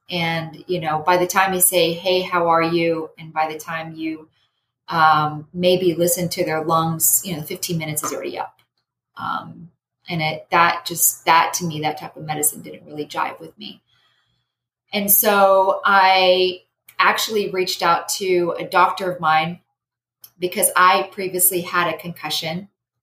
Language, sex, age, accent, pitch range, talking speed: English, female, 30-49, American, 155-180 Hz, 165 wpm